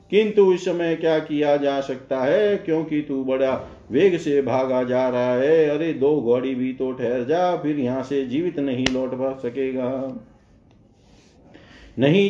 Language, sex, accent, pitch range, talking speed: Hindi, male, native, 125-165 Hz, 160 wpm